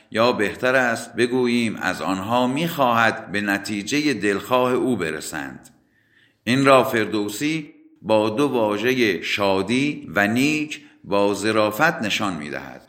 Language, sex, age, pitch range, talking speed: Persian, male, 50-69, 100-135 Hz, 115 wpm